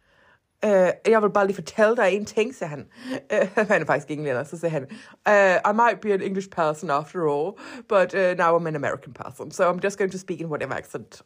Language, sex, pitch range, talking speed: Danish, female, 170-255 Hz, 220 wpm